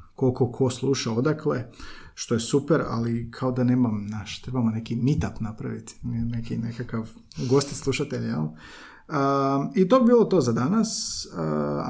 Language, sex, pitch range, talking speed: Croatian, male, 115-145 Hz, 155 wpm